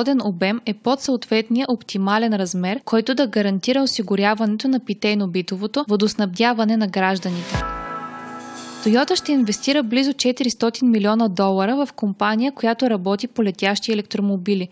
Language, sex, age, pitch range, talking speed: Bulgarian, female, 20-39, 200-245 Hz, 120 wpm